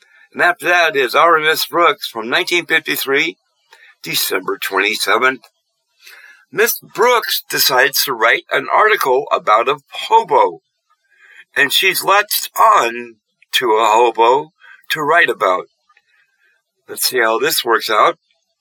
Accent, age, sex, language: American, 60-79, male, English